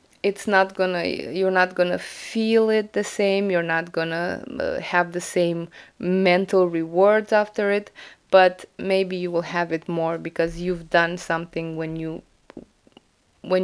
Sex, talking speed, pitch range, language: female, 165 wpm, 170-195 Hz, English